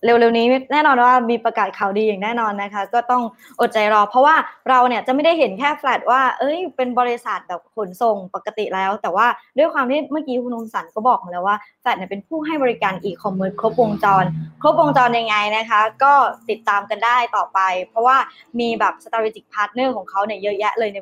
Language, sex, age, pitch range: Thai, male, 20-39, 200-260 Hz